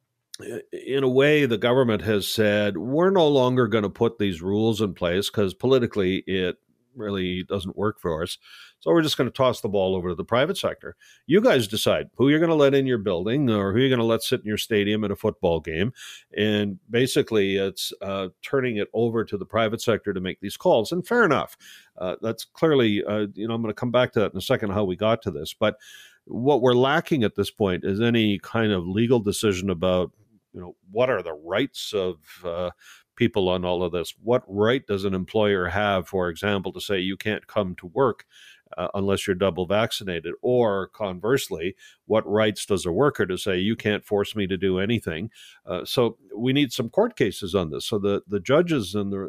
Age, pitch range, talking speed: 50-69, 100-125 Hz, 220 wpm